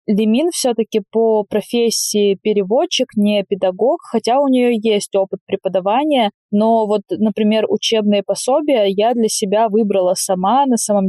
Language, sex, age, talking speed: Russian, female, 20-39, 135 wpm